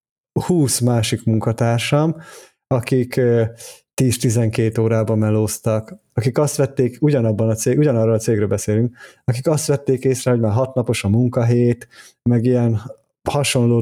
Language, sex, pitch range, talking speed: Hungarian, male, 115-145 Hz, 125 wpm